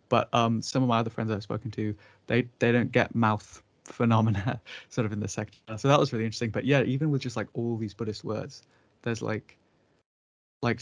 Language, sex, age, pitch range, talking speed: English, male, 20-39, 105-125 Hz, 215 wpm